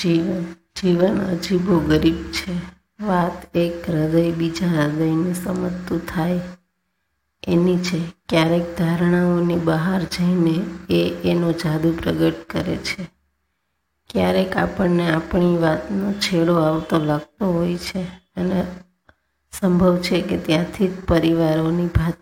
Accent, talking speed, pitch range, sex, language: native, 85 wpm, 165-180 Hz, female, Gujarati